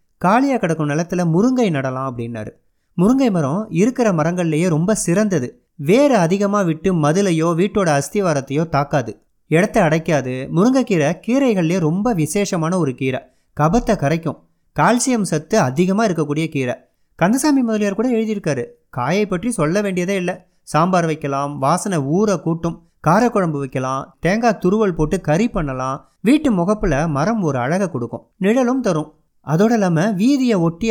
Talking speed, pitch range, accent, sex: 130 wpm, 145-215 Hz, native, male